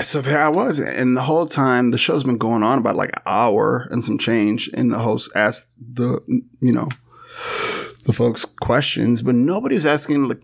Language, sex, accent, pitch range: English, male, American, 120-150 Hz